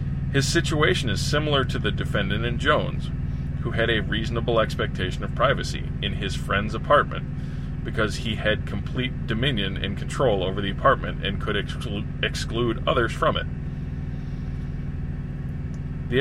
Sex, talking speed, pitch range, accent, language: male, 135 wpm, 85-125 Hz, American, English